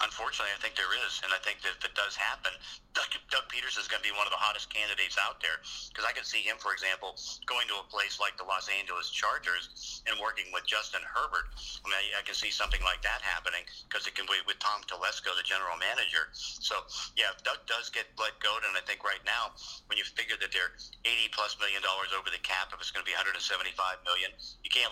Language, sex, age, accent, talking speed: English, male, 50-69, American, 235 wpm